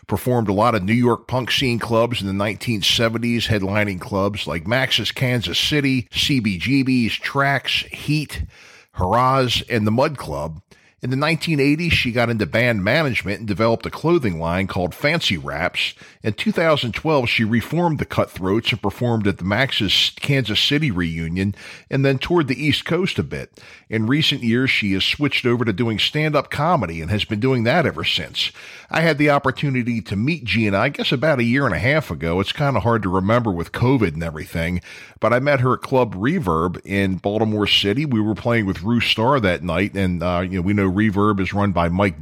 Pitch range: 95-130 Hz